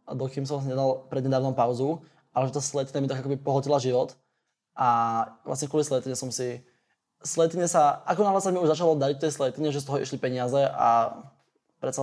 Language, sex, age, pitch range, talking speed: Slovak, male, 20-39, 125-145 Hz, 190 wpm